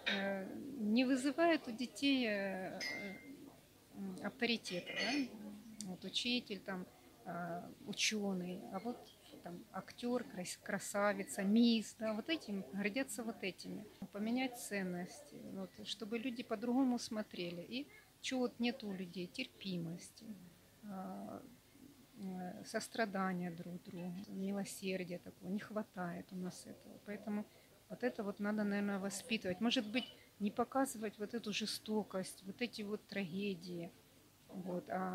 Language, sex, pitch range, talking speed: Russian, female, 190-230 Hz, 110 wpm